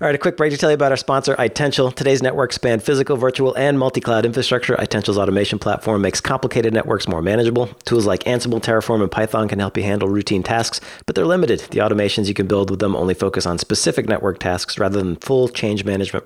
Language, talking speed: English, 225 wpm